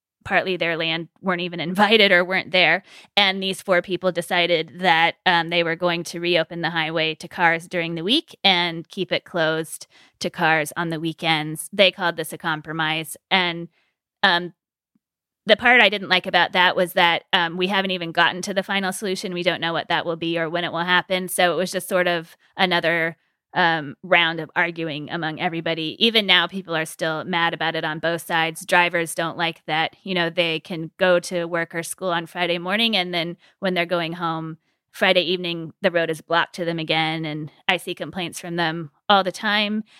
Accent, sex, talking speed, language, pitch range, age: American, female, 205 wpm, English, 165-185 Hz, 20-39